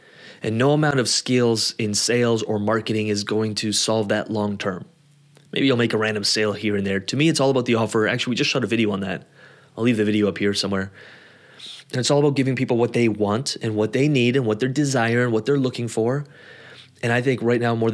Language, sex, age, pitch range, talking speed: English, male, 20-39, 110-135 Hz, 250 wpm